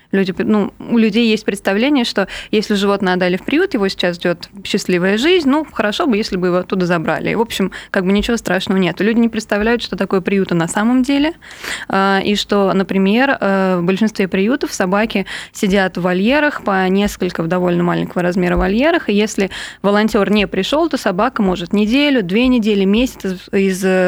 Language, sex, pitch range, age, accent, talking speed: Russian, female, 190-225 Hz, 20-39, native, 175 wpm